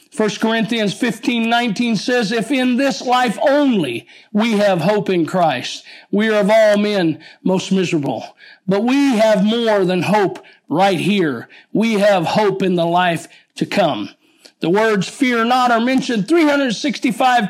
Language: English